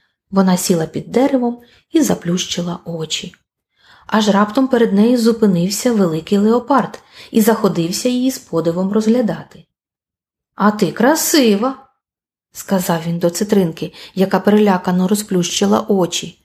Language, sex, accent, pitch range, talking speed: Ukrainian, female, native, 175-260 Hz, 120 wpm